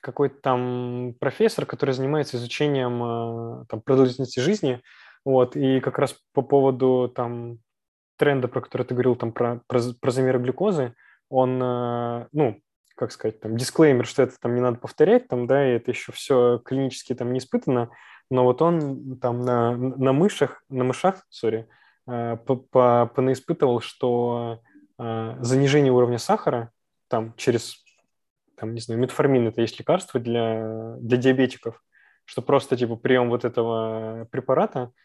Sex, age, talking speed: male, 20-39, 145 wpm